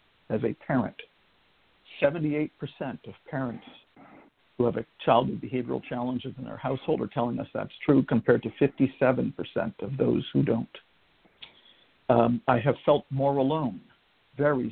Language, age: English, 50-69